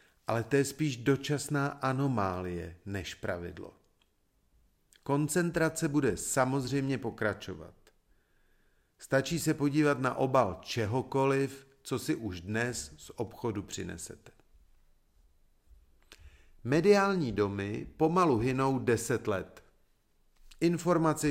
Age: 40-59